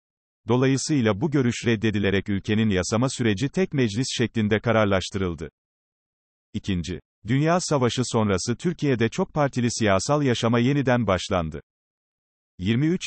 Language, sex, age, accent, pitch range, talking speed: Turkish, male, 40-59, native, 105-130 Hz, 105 wpm